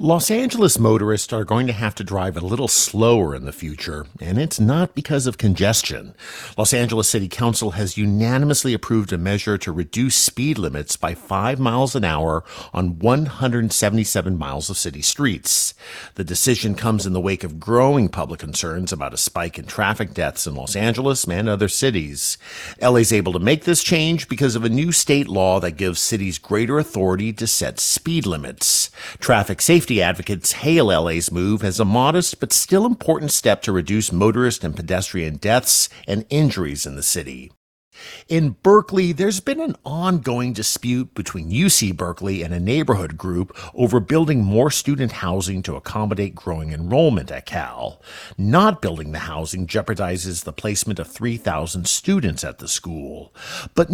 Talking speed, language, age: 170 wpm, English, 50-69